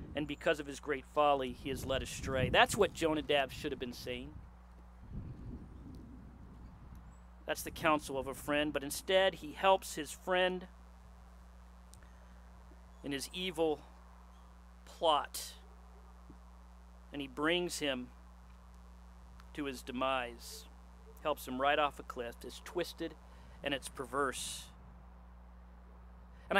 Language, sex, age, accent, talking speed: English, male, 40-59, American, 115 wpm